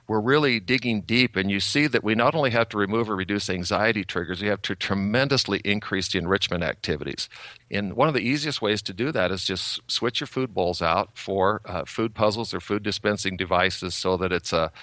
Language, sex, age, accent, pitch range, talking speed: English, male, 50-69, American, 95-115 Hz, 220 wpm